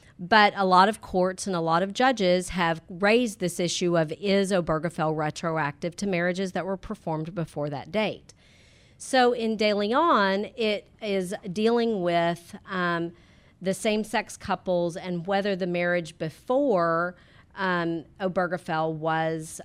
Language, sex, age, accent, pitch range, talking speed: English, female, 40-59, American, 165-200 Hz, 140 wpm